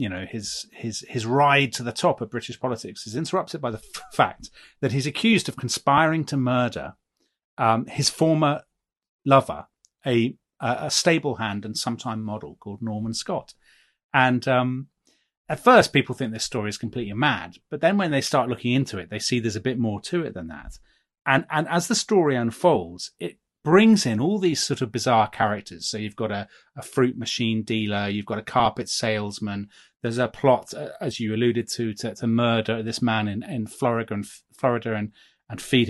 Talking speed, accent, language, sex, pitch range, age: 195 wpm, British, English, male, 110-145 Hz, 30-49